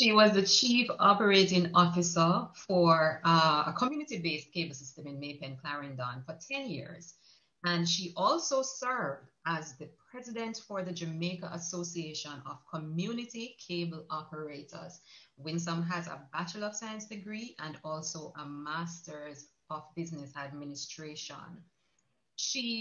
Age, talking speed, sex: 30-49, 125 wpm, female